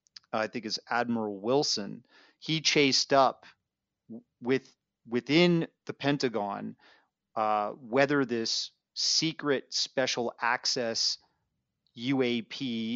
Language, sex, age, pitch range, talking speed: English, male, 30-49, 110-130 Hz, 90 wpm